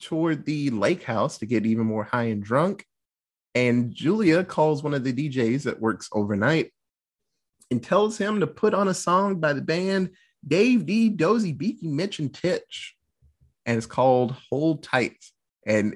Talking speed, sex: 170 wpm, male